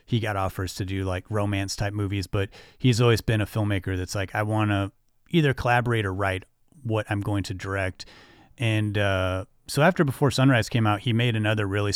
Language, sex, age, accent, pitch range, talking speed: English, male, 30-49, American, 95-110 Hz, 205 wpm